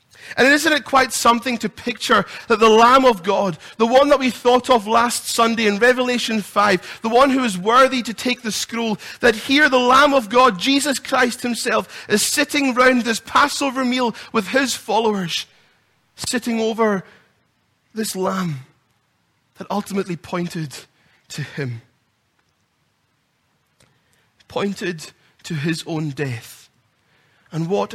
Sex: male